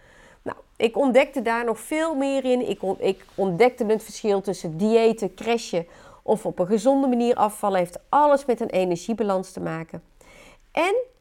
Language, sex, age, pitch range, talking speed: Dutch, female, 30-49, 195-275 Hz, 160 wpm